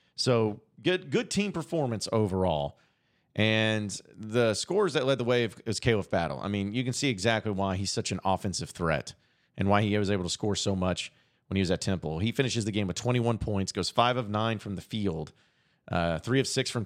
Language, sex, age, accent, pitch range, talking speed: English, male, 40-59, American, 95-120 Hz, 215 wpm